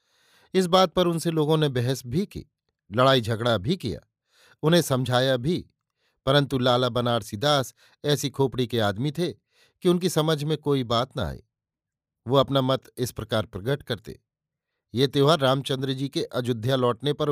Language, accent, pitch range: Hindi, native, 120-150 Hz